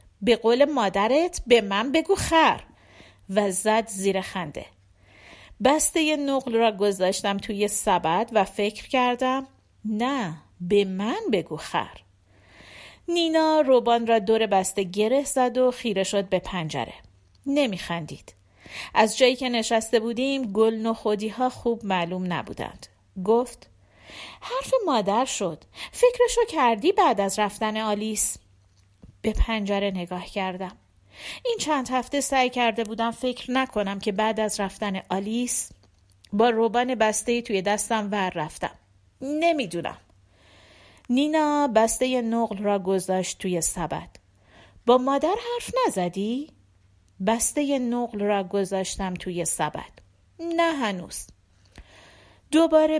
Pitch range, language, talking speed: 180-255 Hz, Persian, 120 wpm